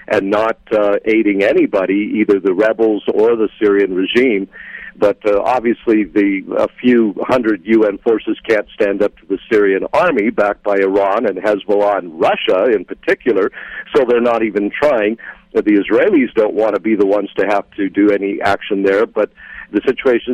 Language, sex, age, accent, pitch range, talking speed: English, male, 50-69, American, 100-125 Hz, 180 wpm